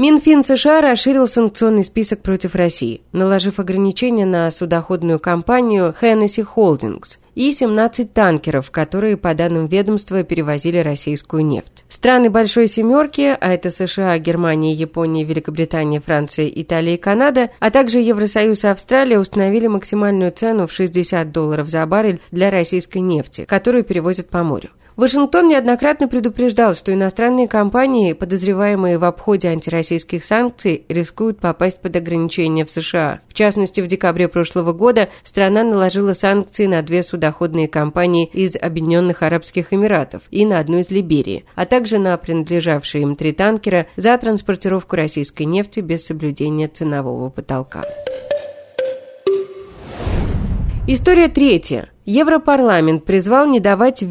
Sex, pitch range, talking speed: female, 165-225 Hz, 130 wpm